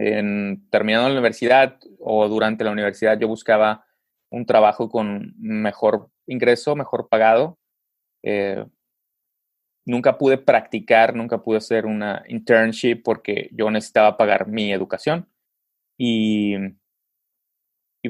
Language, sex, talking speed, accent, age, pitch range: English, male, 115 wpm, Mexican, 30-49, 105-120 Hz